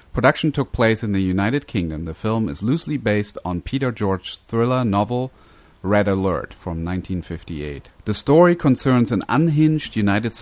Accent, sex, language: German, male, English